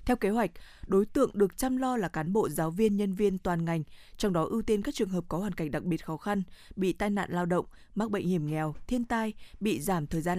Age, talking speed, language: 20-39, 265 wpm, Vietnamese